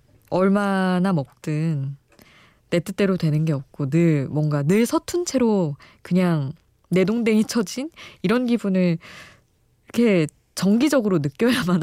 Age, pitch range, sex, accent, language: 20-39, 155-195 Hz, female, native, Korean